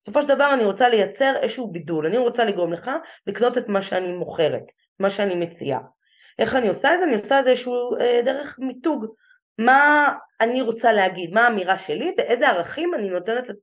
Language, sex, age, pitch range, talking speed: Hebrew, female, 20-39, 185-255 Hz, 185 wpm